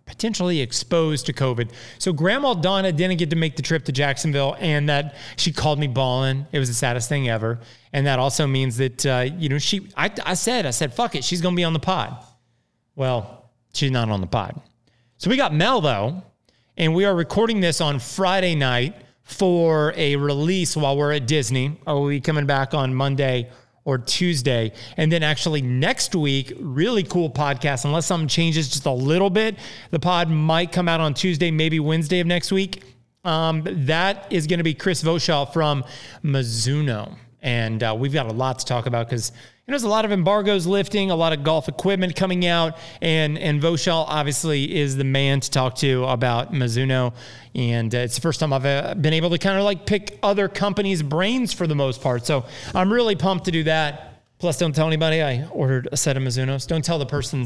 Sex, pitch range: male, 130-170 Hz